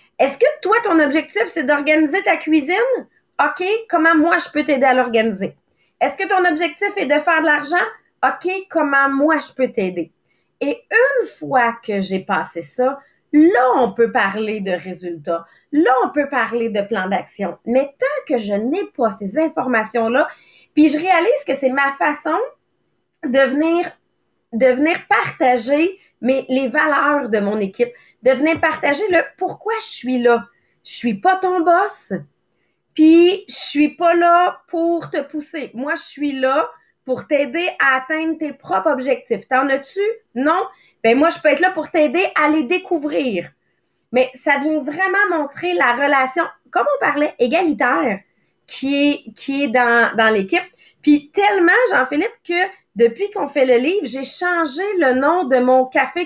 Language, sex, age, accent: English, female, 30-49, Canadian